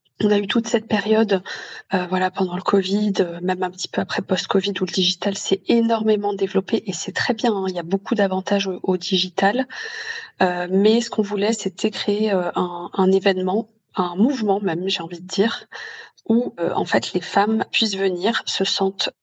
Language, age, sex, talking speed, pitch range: French, 20-39, female, 205 wpm, 185-220 Hz